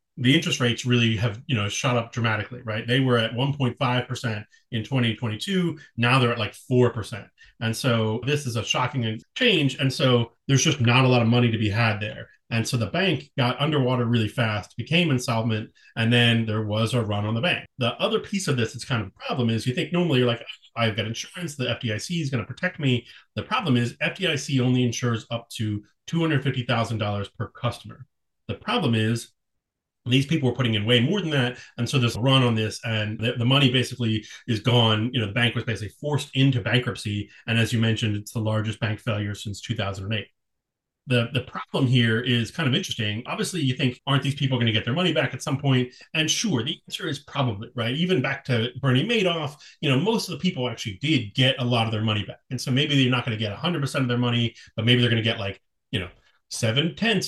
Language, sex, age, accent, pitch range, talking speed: English, male, 30-49, American, 115-135 Hz, 230 wpm